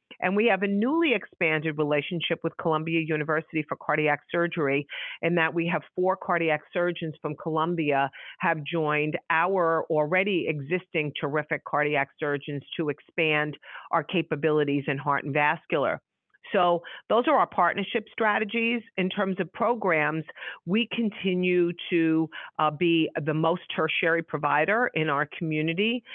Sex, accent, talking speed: female, American, 140 wpm